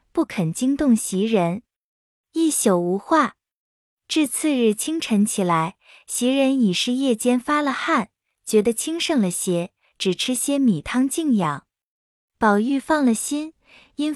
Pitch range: 200-285 Hz